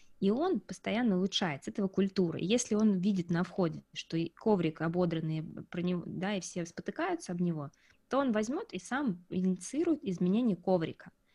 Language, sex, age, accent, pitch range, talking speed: Russian, female, 20-39, native, 175-215 Hz, 165 wpm